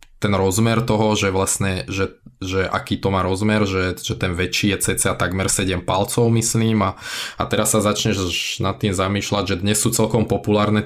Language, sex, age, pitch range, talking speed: Slovak, male, 20-39, 95-110 Hz, 190 wpm